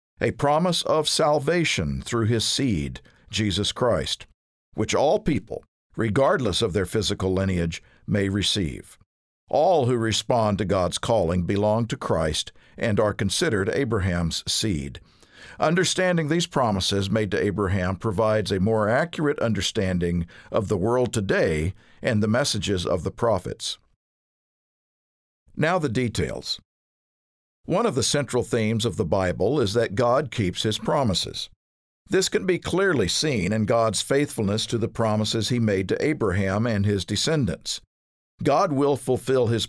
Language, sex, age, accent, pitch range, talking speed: English, male, 50-69, American, 95-125 Hz, 140 wpm